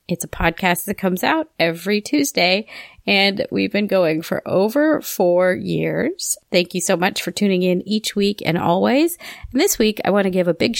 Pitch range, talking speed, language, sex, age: 175-225 Hz, 200 wpm, English, female, 30-49